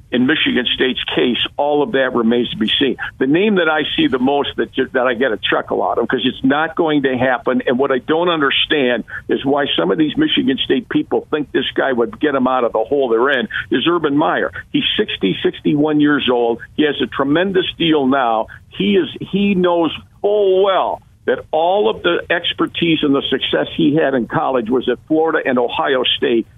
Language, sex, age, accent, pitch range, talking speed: English, male, 50-69, American, 130-200 Hz, 215 wpm